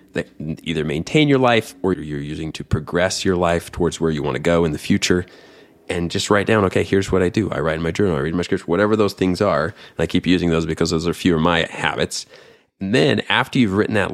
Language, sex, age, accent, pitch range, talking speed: English, male, 30-49, American, 85-100 Hz, 265 wpm